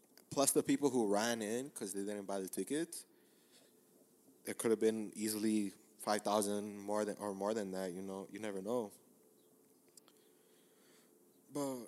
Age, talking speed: 20-39, 155 wpm